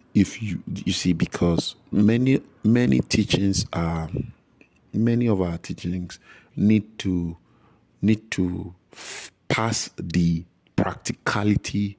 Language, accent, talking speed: English, Nigerian, 100 wpm